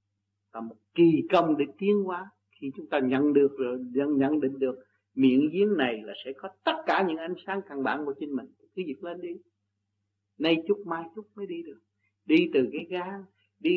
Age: 60-79